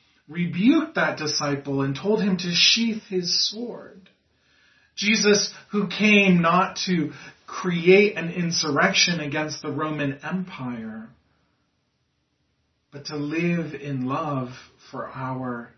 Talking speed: 110 wpm